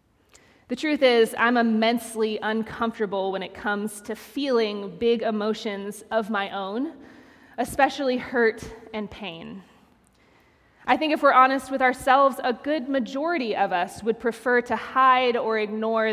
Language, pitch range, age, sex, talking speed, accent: English, 215-260 Hz, 20-39, female, 140 wpm, American